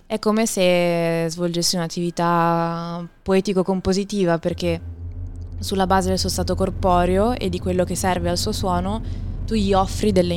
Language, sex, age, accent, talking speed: Italian, female, 20-39, native, 145 wpm